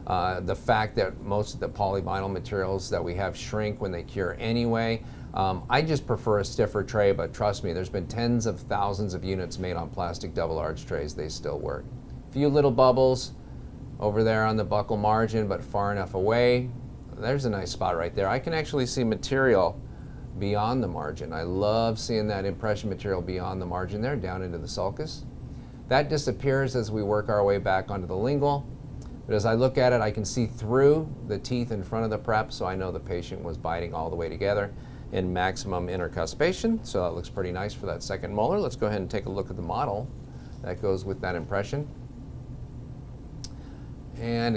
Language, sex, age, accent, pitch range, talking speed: English, male, 40-59, American, 95-125 Hz, 205 wpm